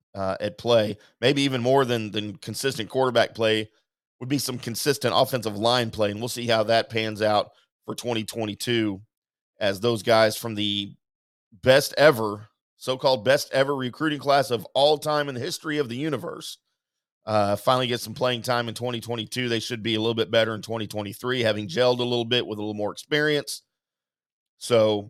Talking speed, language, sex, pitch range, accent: 180 wpm, English, male, 105-125 Hz, American